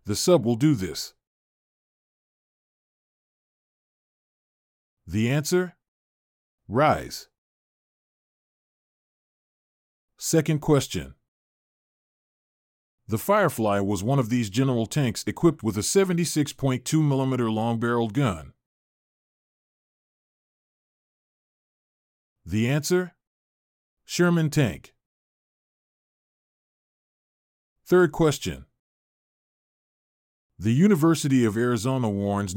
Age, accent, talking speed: 50-69, American, 65 wpm